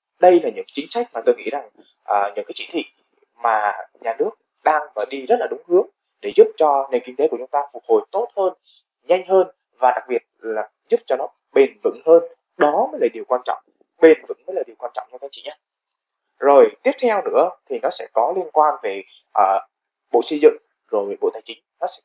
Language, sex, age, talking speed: Vietnamese, male, 20-39, 235 wpm